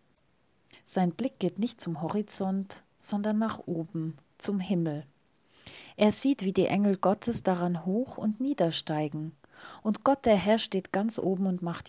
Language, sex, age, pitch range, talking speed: German, female, 30-49, 165-205 Hz, 150 wpm